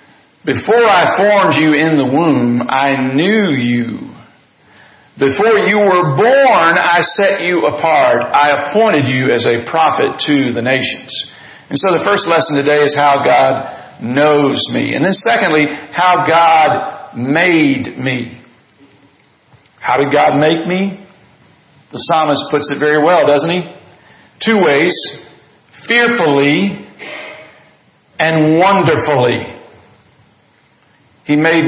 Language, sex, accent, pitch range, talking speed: English, male, American, 135-175 Hz, 125 wpm